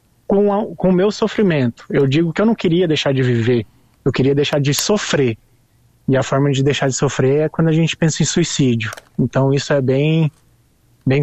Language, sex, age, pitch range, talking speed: Portuguese, male, 20-39, 135-170 Hz, 200 wpm